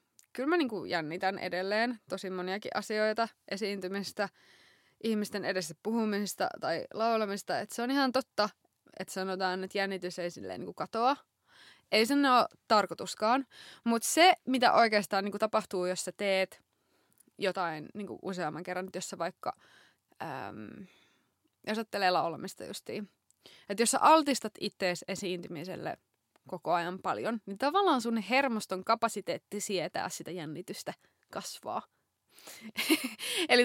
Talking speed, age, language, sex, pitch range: 125 wpm, 20-39, Finnish, female, 185-225 Hz